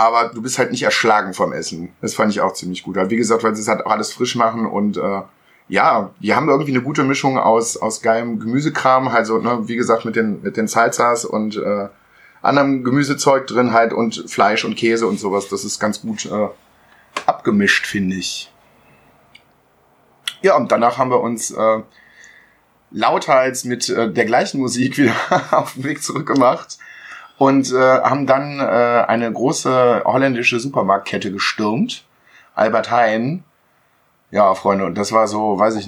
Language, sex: German, male